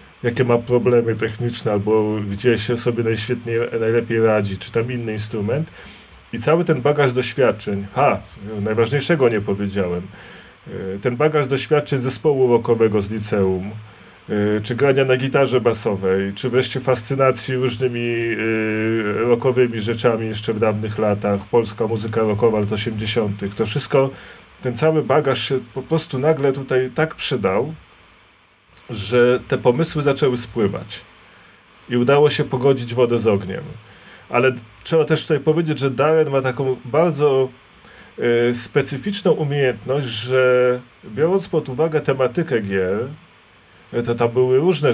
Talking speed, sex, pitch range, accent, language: 130 wpm, male, 110-130 Hz, native, Polish